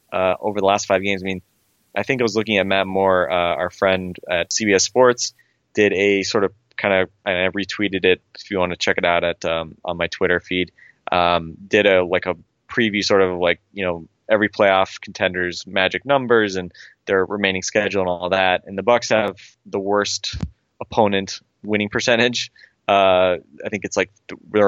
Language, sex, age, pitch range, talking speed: English, male, 20-39, 90-105 Hz, 200 wpm